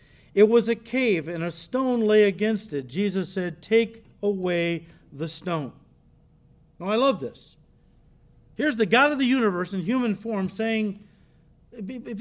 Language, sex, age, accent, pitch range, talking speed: English, male, 50-69, American, 170-230 Hz, 150 wpm